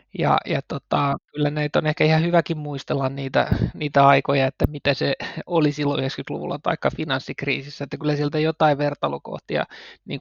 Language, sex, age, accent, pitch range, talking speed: Finnish, male, 20-39, native, 140-160 Hz, 160 wpm